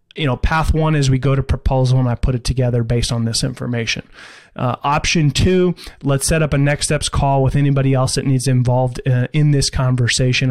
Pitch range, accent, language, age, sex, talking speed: 130-155 Hz, American, English, 20-39, male, 215 wpm